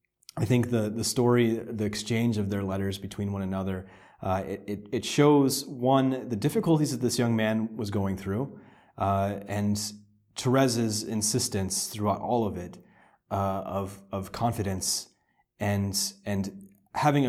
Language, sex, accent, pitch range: English, male, American, 95-110 Hz